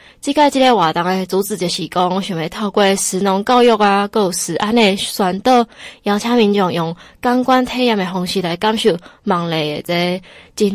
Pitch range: 185-220 Hz